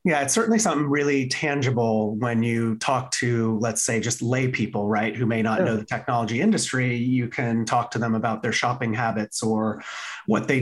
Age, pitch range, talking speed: 30-49, 125-155 Hz, 200 wpm